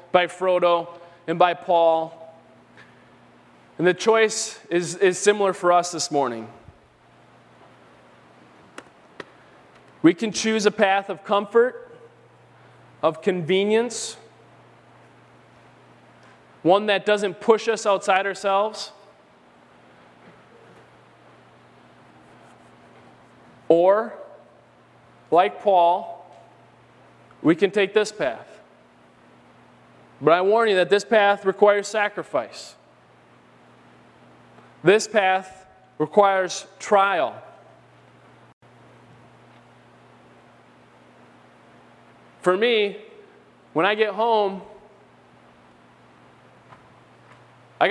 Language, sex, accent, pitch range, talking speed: English, male, American, 170-205 Hz, 75 wpm